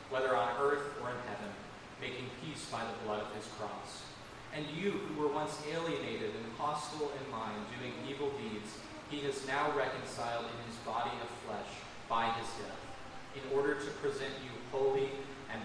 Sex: male